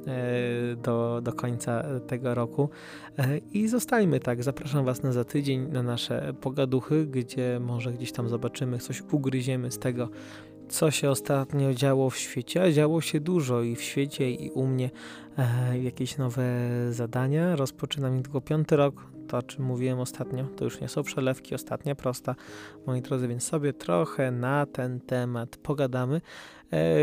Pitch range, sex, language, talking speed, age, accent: 125-150 Hz, male, Polish, 155 wpm, 20-39, native